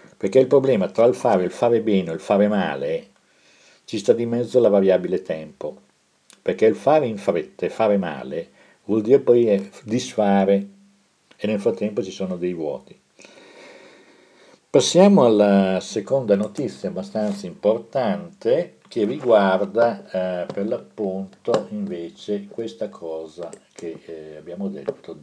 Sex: male